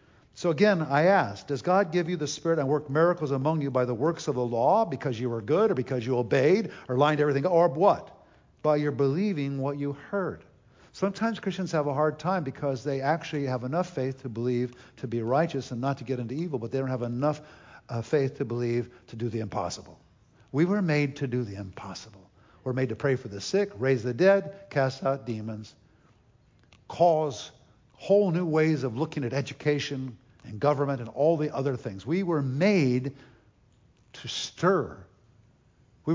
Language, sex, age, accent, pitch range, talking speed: English, male, 60-79, American, 120-160 Hz, 195 wpm